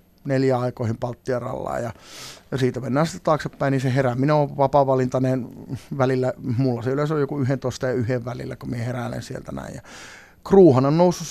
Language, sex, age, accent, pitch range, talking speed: Finnish, male, 30-49, native, 125-140 Hz, 175 wpm